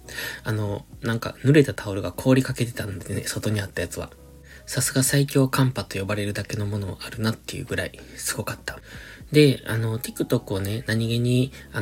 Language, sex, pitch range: Japanese, male, 100-135 Hz